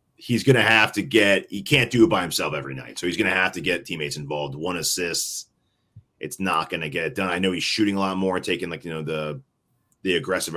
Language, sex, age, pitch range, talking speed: English, male, 30-49, 75-100 Hz, 240 wpm